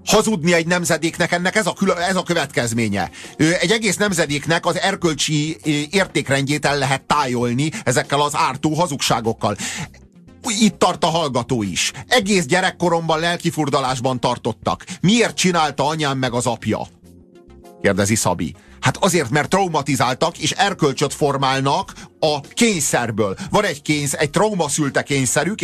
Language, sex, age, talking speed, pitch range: Hungarian, male, 40-59, 125 wpm, 100-160 Hz